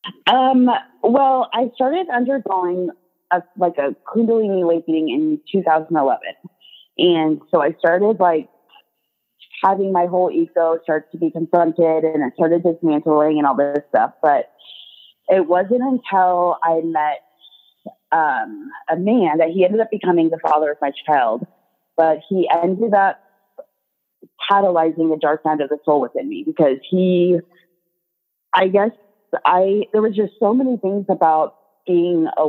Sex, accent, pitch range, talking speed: female, American, 155-200 Hz, 145 wpm